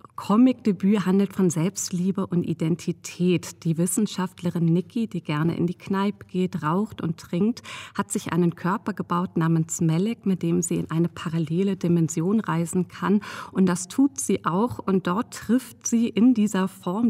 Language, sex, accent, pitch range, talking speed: German, female, German, 170-195 Hz, 160 wpm